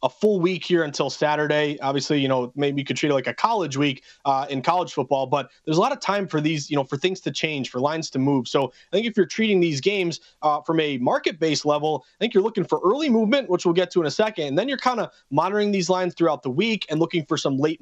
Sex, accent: male, American